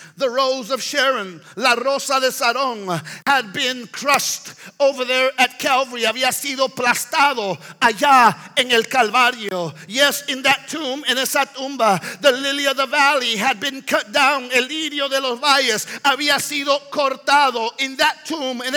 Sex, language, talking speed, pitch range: male, English, 160 wpm, 255-290 Hz